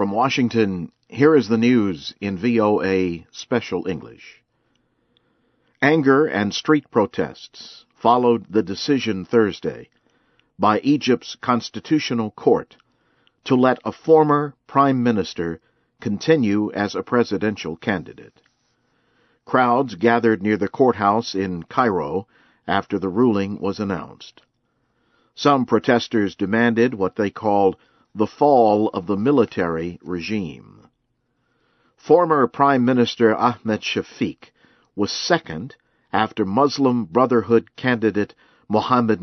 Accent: American